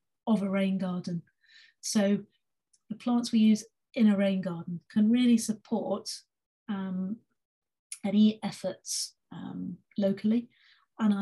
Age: 40-59